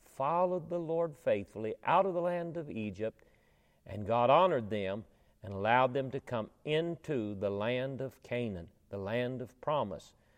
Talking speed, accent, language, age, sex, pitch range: 160 wpm, American, English, 40-59, male, 115-190 Hz